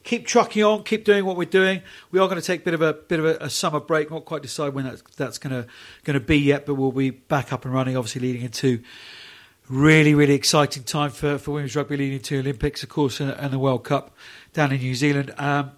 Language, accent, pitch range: English, British, 130-160 Hz